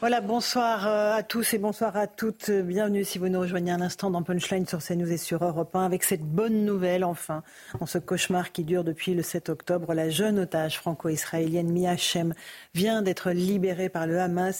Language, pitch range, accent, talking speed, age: French, 170-200 Hz, French, 200 wpm, 40-59